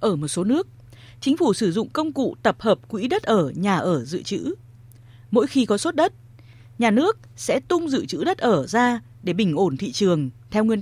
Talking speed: 220 wpm